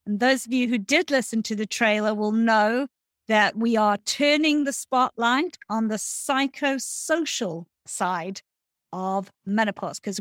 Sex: female